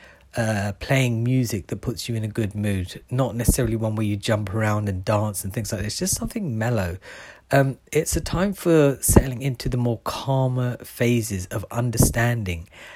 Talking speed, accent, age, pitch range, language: 185 wpm, British, 40-59, 105-130 Hz, English